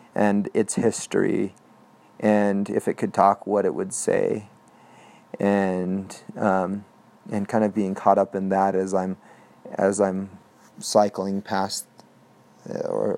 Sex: male